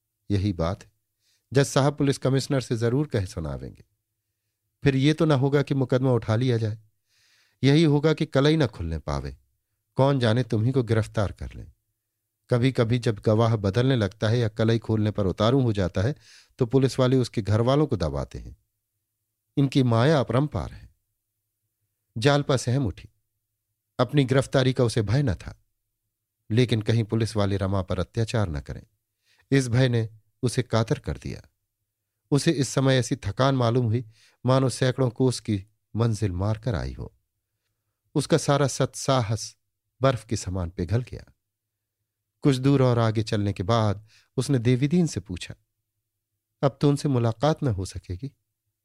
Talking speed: 145 wpm